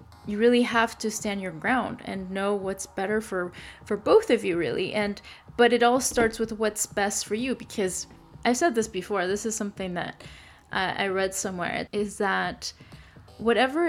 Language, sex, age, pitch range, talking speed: English, female, 10-29, 195-230 Hz, 185 wpm